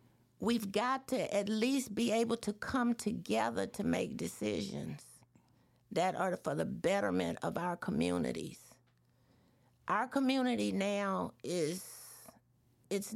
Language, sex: English, female